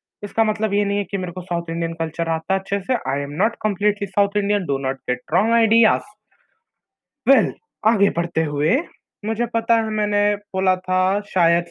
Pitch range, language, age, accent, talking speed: 180-255 Hz, Hindi, 20-39, native, 135 wpm